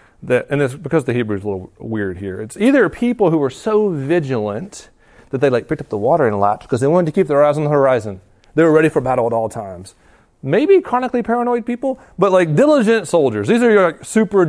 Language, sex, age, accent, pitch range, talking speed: English, male, 30-49, American, 115-185 Hz, 240 wpm